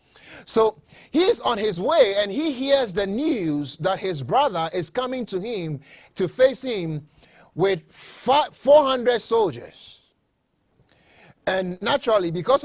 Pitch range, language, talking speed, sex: 170-260 Hz, English, 125 wpm, male